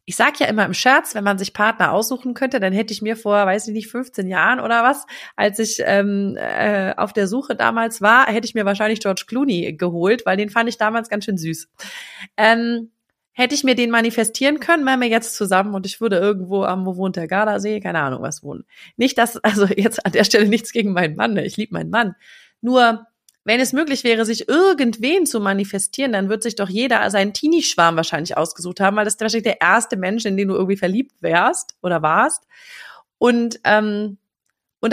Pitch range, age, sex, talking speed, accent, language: 190-230 Hz, 30-49, female, 215 wpm, German, German